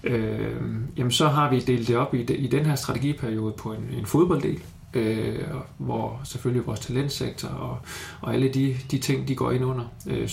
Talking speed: 185 wpm